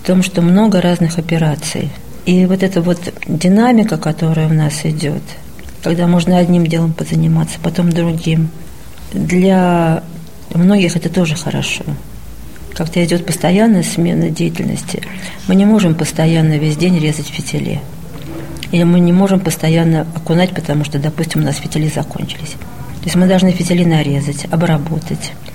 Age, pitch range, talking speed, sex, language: 40-59, 155-180 Hz, 140 wpm, female, Russian